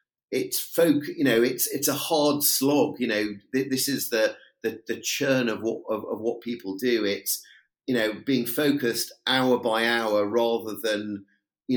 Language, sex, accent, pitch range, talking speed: English, male, British, 110-140 Hz, 180 wpm